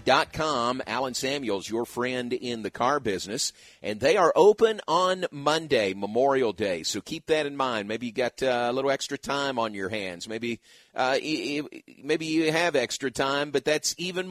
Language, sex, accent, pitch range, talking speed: English, male, American, 115-145 Hz, 195 wpm